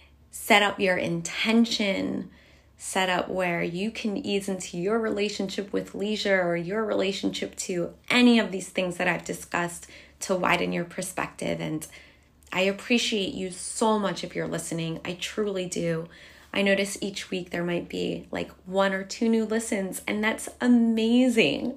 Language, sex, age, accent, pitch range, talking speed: English, female, 20-39, American, 175-220 Hz, 160 wpm